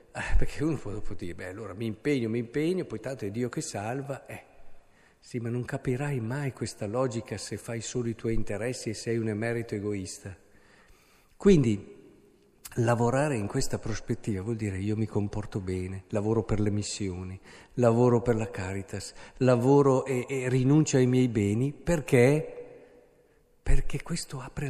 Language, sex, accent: Italian, male, native